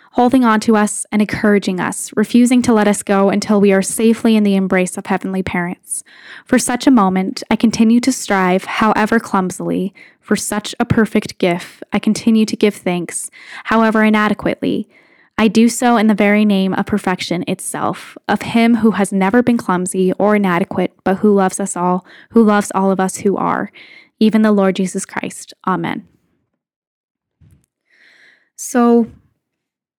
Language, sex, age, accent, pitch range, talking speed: English, female, 10-29, American, 190-225 Hz, 165 wpm